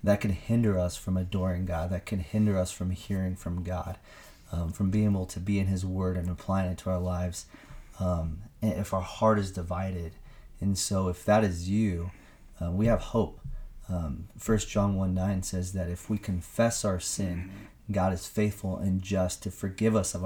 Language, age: English, 30-49